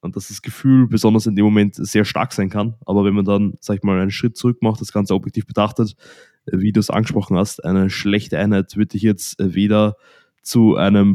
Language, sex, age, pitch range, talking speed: German, male, 20-39, 95-105 Hz, 220 wpm